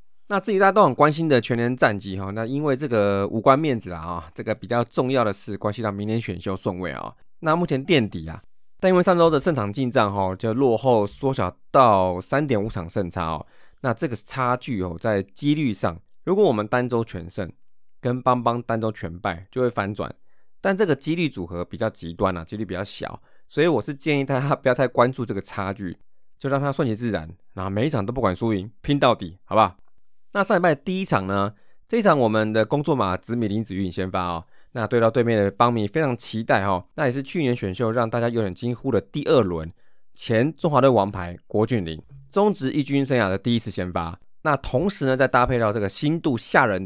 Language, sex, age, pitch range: Chinese, male, 20-39, 95-130 Hz